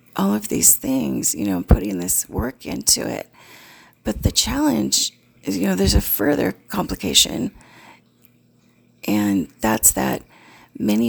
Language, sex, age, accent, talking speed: English, female, 40-59, American, 135 wpm